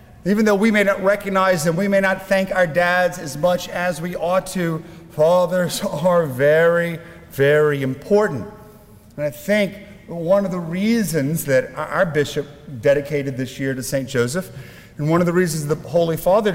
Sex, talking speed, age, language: male, 175 wpm, 40-59, English